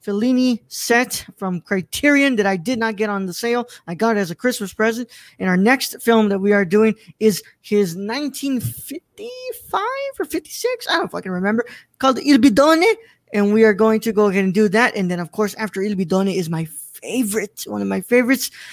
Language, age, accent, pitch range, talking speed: English, 20-39, American, 190-245 Hz, 200 wpm